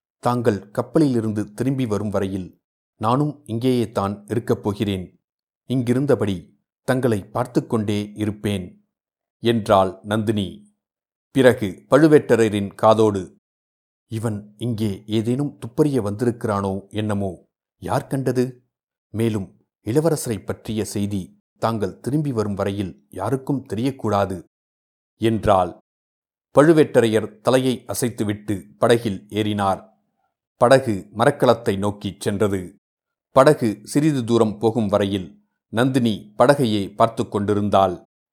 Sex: male